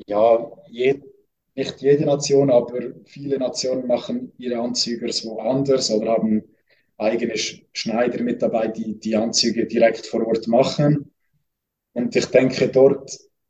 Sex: male